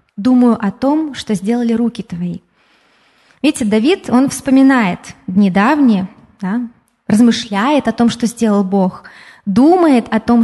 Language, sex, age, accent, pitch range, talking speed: Russian, female, 20-39, native, 205-255 Hz, 125 wpm